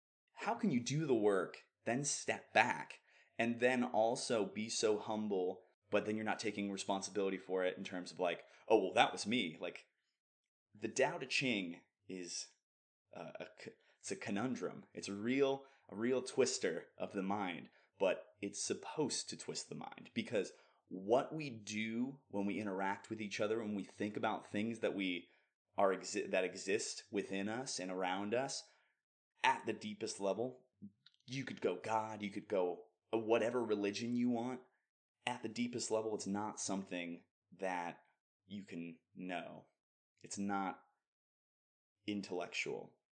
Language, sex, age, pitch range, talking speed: English, male, 20-39, 95-115 Hz, 155 wpm